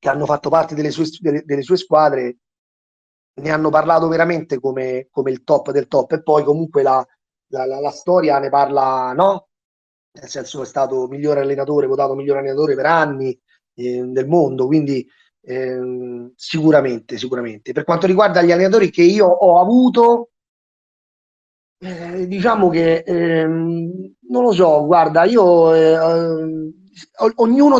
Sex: male